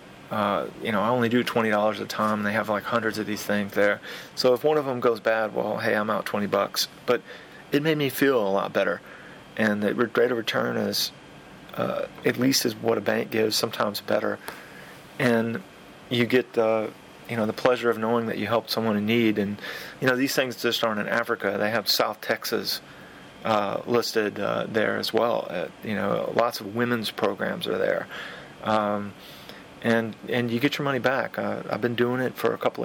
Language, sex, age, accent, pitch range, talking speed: English, male, 40-59, American, 110-120 Hz, 210 wpm